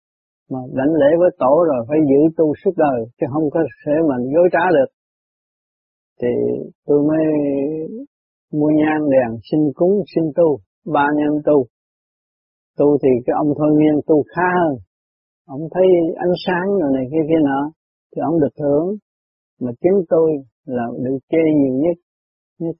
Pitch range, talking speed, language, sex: 135-170 Hz, 165 wpm, Vietnamese, male